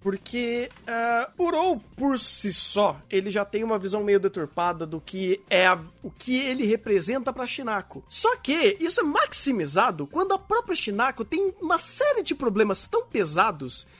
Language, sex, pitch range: Portuguese, male, 195-285 Hz